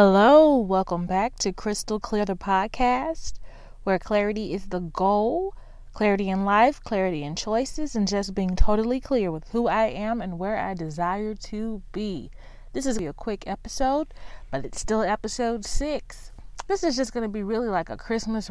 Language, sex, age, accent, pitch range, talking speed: English, female, 20-39, American, 185-225 Hz, 185 wpm